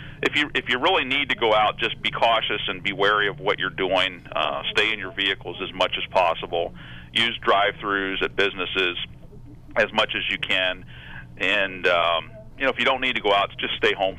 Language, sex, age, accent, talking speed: English, male, 40-59, American, 215 wpm